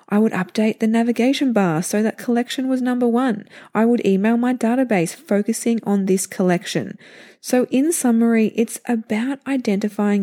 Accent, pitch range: Australian, 190-230 Hz